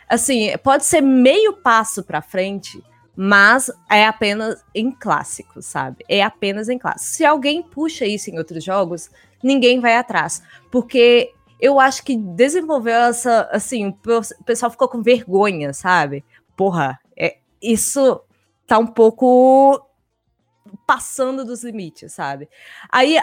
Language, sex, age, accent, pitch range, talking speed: Portuguese, female, 20-39, Brazilian, 195-255 Hz, 130 wpm